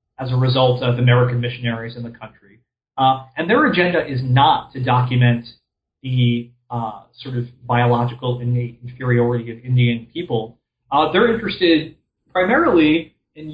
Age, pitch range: 30-49, 120-150 Hz